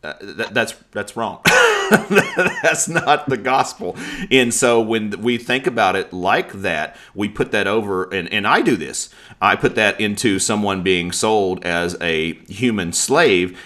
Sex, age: male, 40-59